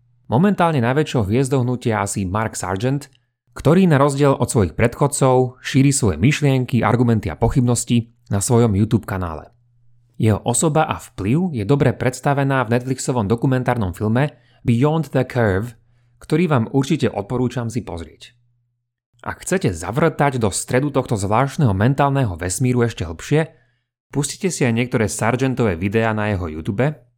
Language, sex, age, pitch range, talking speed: Slovak, male, 30-49, 110-135 Hz, 140 wpm